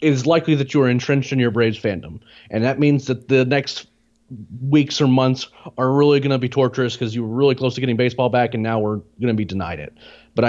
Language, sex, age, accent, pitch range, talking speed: English, male, 30-49, American, 115-140 Hz, 245 wpm